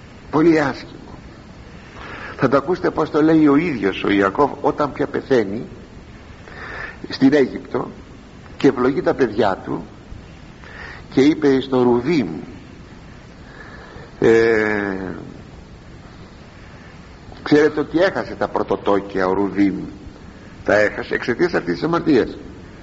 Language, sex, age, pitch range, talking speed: Greek, male, 60-79, 125-205 Hz, 90 wpm